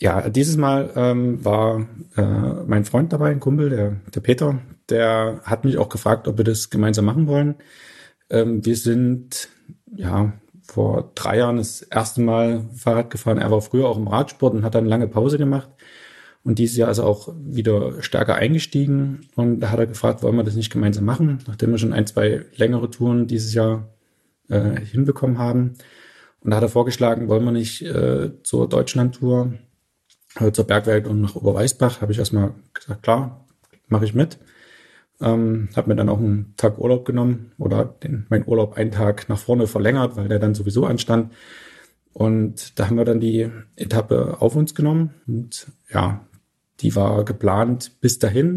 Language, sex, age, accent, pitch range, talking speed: German, male, 30-49, German, 105-125 Hz, 180 wpm